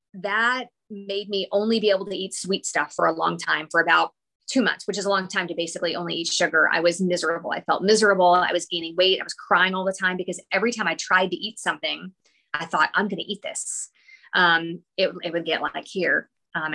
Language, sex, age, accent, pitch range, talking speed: English, female, 30-49, American, 175-210 Hz, 240 wpm